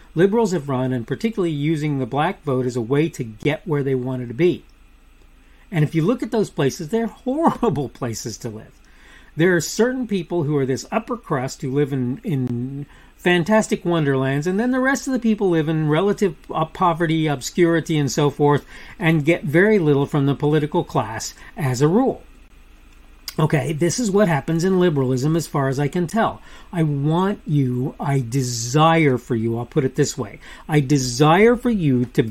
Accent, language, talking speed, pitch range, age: American, English, 190 wpm, 135-175 Hz, 40-59